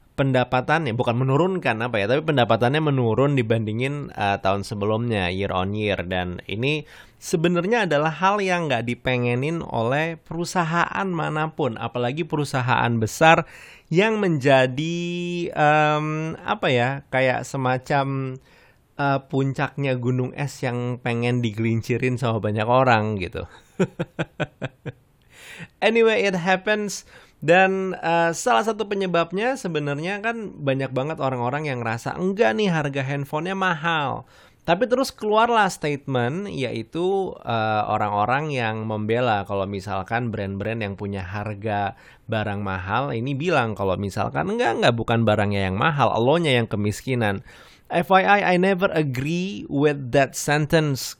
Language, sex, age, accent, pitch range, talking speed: Indonesian, male, 30-49, native, 115-170 Hz, 120 wpm